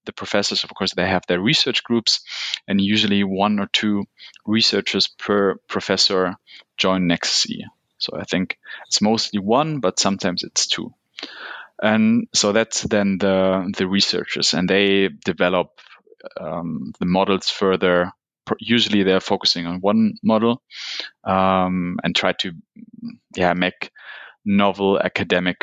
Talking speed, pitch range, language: 135 wpm, 95-115 Hz, English